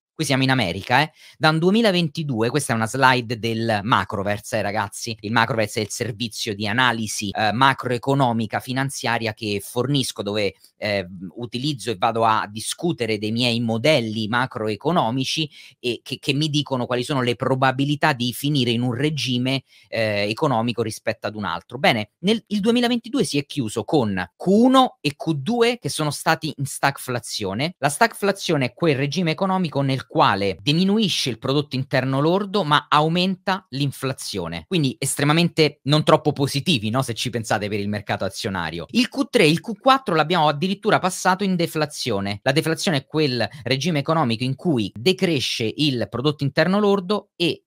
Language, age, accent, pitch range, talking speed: Italian, 30-49, native, 115-150 Hz, 160 wpm